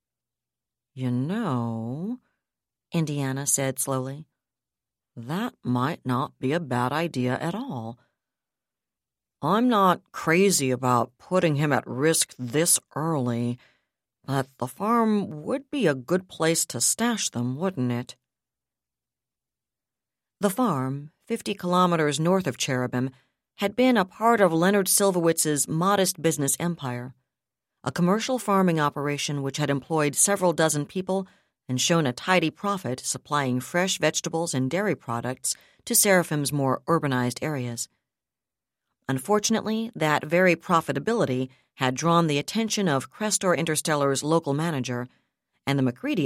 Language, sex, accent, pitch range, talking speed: English, female, American, 130-185 Hz, 125 wpm